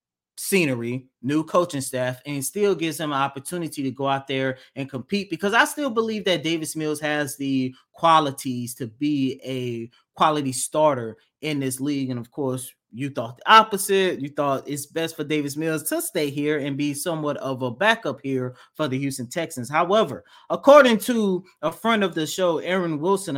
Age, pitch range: 30-49, 135-180 Hz